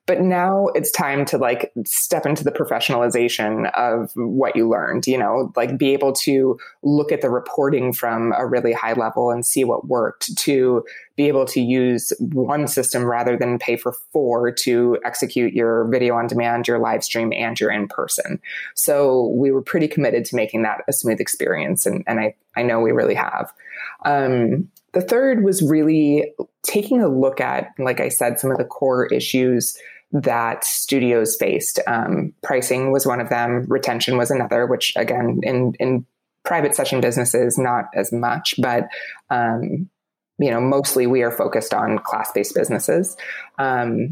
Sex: female